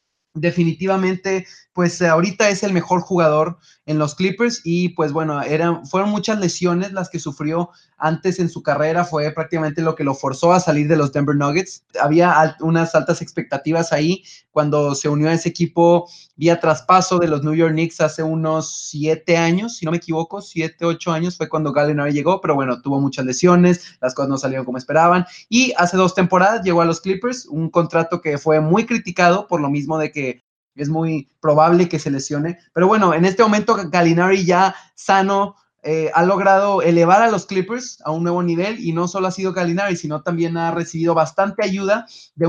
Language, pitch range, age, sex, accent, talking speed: Spanish, 155-185 Hz, 20-39, male, Mexican, 195 wpm